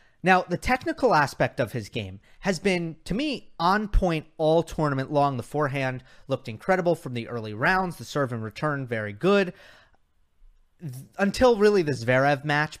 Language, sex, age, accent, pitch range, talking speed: English, male, 30-49, American, 120-165 Hz, 165 wpm